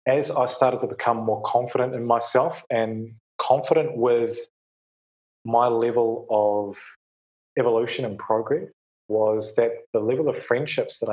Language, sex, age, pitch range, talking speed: English, male, 20-39, 105-125 Hz, 135 wpm